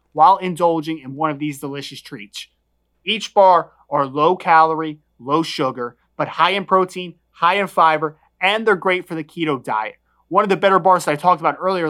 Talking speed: 195 wpm